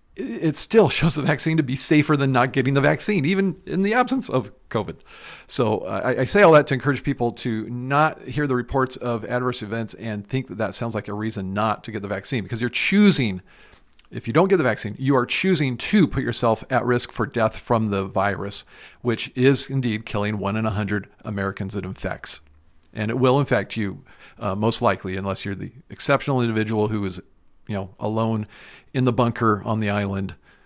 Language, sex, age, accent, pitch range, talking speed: English, male, 50-69, American, 105-140 Hz, 205 wpm